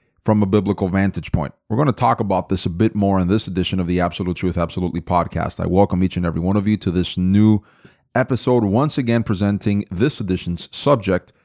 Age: 30-49